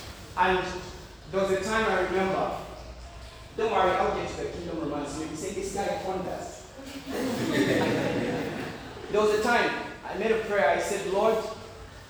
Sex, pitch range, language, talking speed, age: male, 145-220 Hz, English, 165 wpm, 30-49